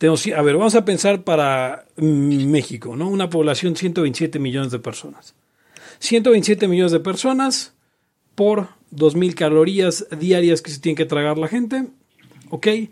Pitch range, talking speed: 145-205 Hz, 145 wpm